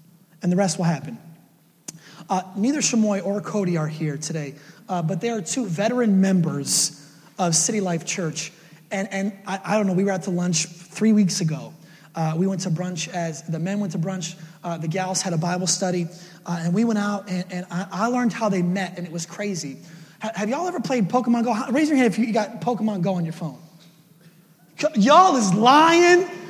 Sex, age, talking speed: male, 30-49, 215 wpm